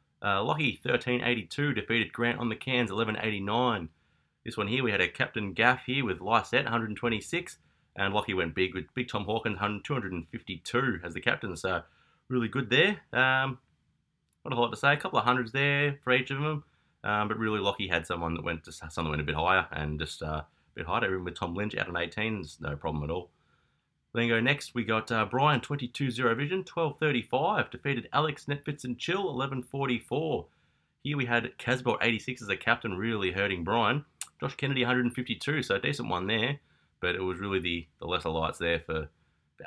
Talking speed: 215 wpm